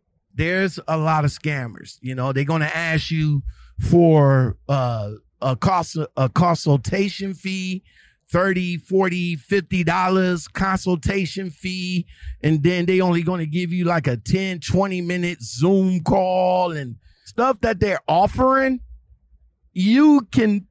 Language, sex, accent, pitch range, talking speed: English, male, American, 150-200 Hz, 135 wpm